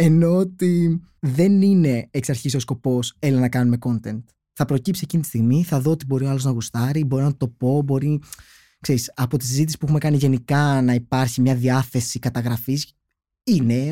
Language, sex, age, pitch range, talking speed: Greek, male, 20-39, 120-175 Hz, 190 wpm